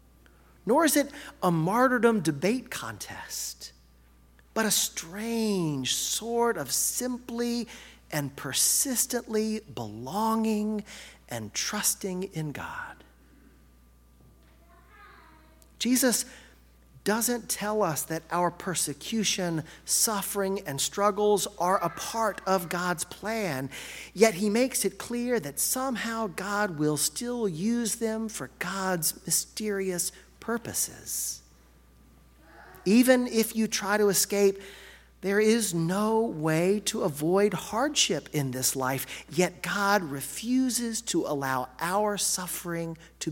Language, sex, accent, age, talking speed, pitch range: English, male, American, 40-59, 105 wpm, 150-225 Hz